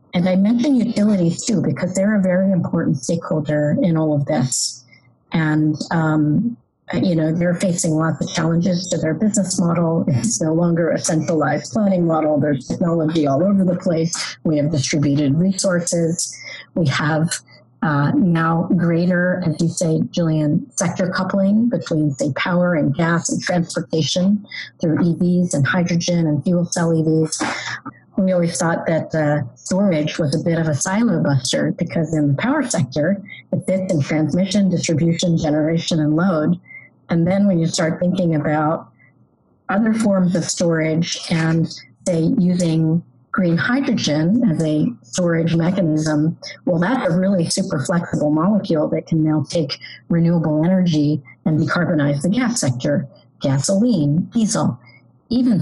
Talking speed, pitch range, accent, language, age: 150 wpm, 155-185 Hz, American, English, 40-59